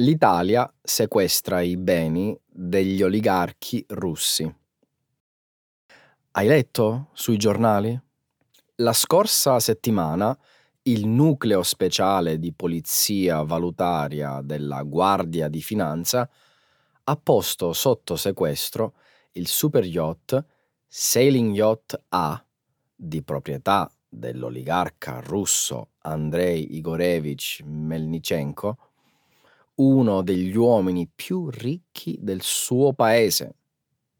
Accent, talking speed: native, 85 wpm